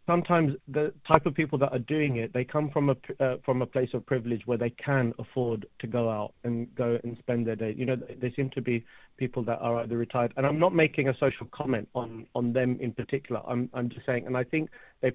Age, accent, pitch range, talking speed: 40-59, British, 120-135 Hz, 255 wpm